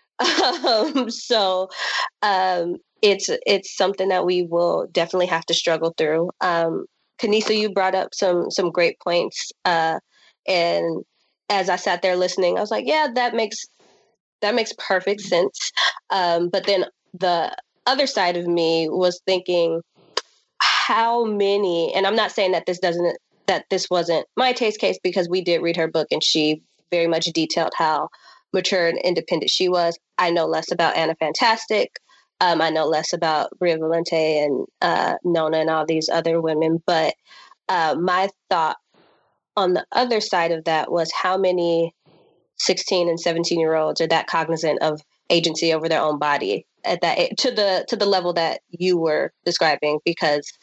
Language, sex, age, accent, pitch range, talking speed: English, female, 20-39, American, 165-190 Hz, 170 wpm